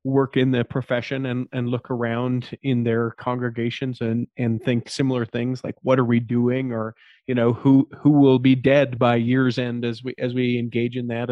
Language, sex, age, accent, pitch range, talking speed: English, male, 40-59, American, 120-140 Hz, 205 wpm